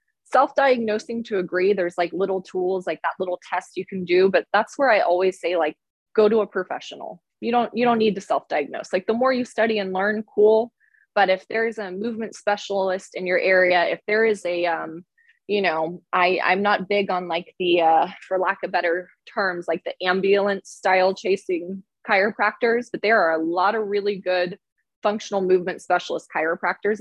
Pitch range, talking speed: 175-210 Hz, 195 wpm